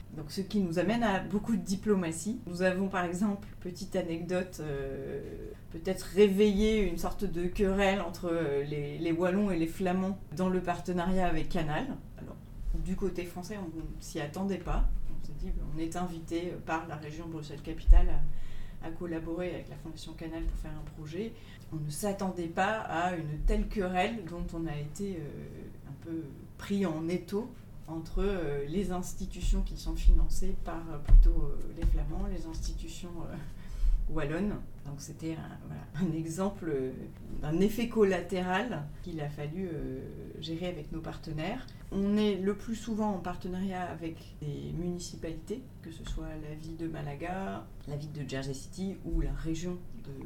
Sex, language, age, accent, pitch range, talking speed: female, French, 30-49, French, 150-185 Hz, 160 wpm